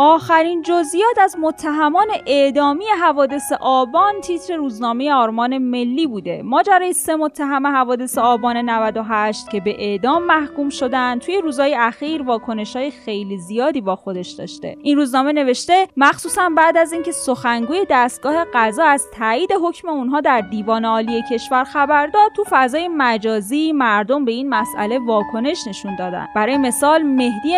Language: Persian